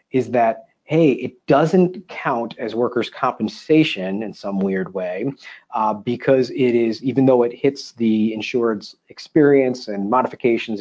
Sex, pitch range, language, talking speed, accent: male, 115-150 Hz, English, 145 wpm, American